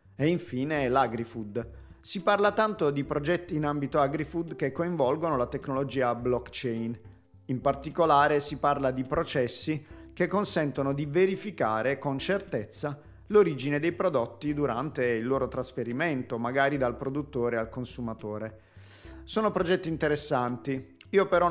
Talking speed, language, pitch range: 125 wpm, Italian, 125-160 Hz